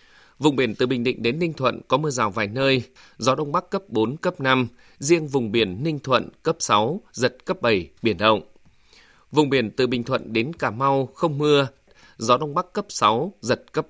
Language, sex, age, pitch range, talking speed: Vietnamese, male, 20-39, 115-150 Hz, 210 wpm